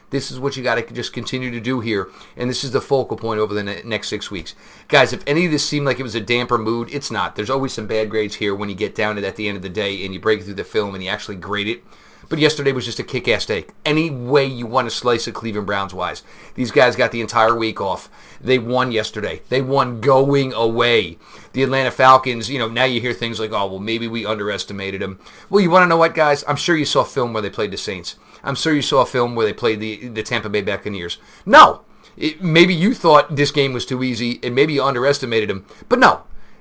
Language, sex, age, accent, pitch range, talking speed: English, male, 40-59, American, 110-140 Hz, 265 wpm